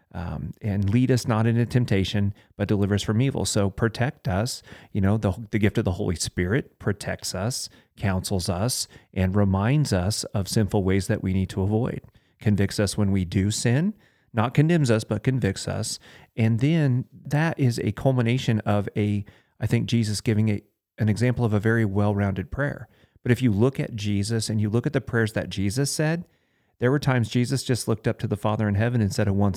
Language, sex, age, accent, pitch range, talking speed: English, male, 40-59, American, 105-120 Hz, 205 wpm